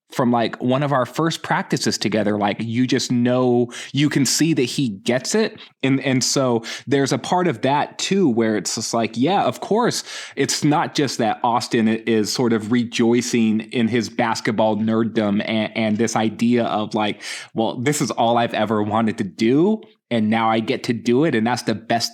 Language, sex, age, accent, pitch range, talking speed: English, male, 20-39, American, 110-130 Hz, 200 wpm